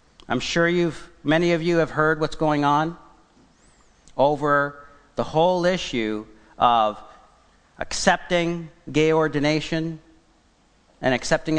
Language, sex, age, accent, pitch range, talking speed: English, male, 40-59, American, 135-175 Hz, 110 wpm